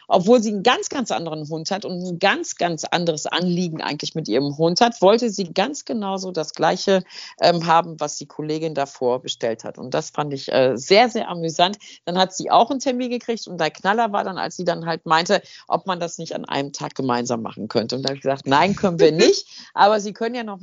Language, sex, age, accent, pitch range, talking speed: German, female, 50-69, German, 165-220 Hz, 235 wpm